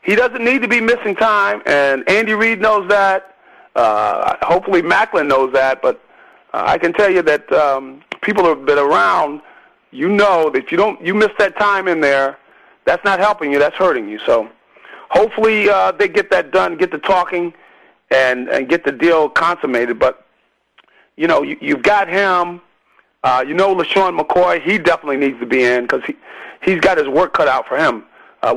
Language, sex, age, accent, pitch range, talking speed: English, male, 40-59, American, 170-210 Hz, 190 wpm